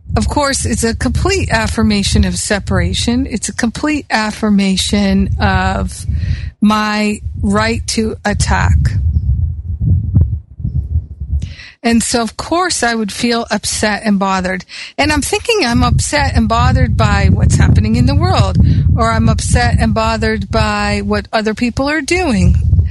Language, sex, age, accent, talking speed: English, female, 50-69, American, 135 wpm